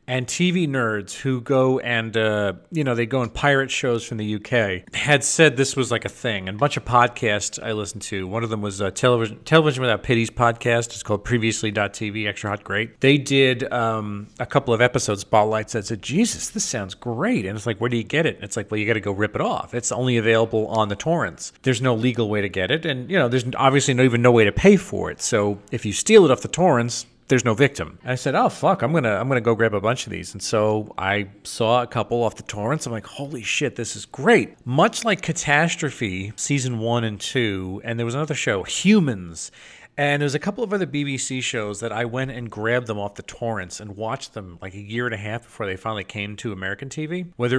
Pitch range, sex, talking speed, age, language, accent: 105-135 Hz, male, 245 wpm, 40-59, English, American